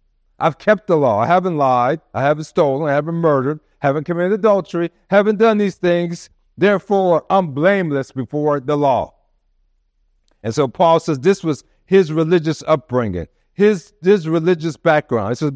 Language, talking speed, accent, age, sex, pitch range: English, 160 wpm, American, 50-69, male, 125-185 Hz